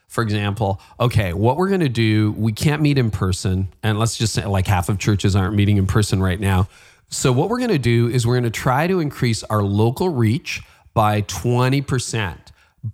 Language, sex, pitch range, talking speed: English, male, 100-125 Hz, 210 wpm